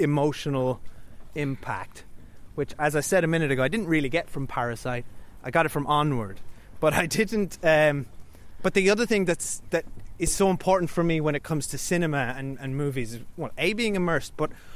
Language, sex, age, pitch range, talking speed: English, male, 30-49, 135-170 Hz, 200 wpm